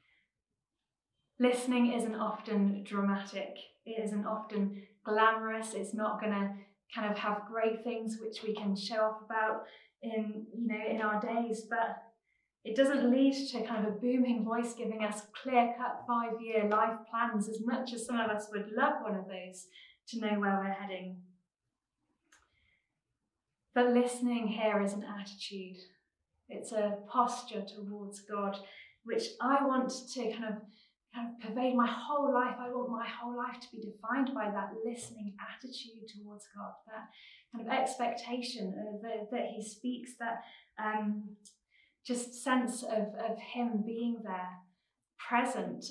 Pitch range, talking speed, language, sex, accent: 210-240 Hz, 155 wpm, English, female, British